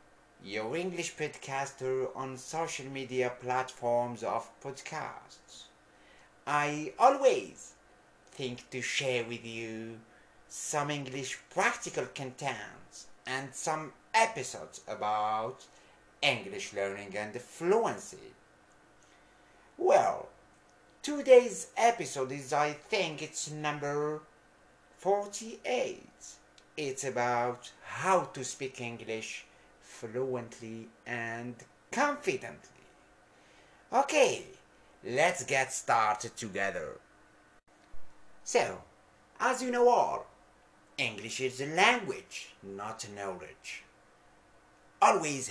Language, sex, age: English, male, 60-79